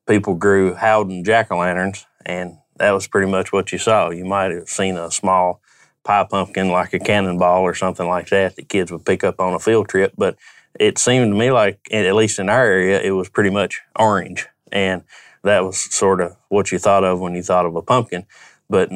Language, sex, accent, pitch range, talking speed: English, male, American, 90-100 Hz, 215 wpm